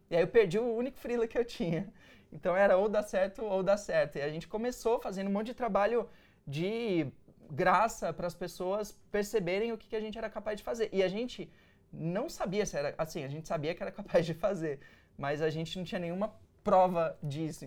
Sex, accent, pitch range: male, Brazilian, 160-215 Hz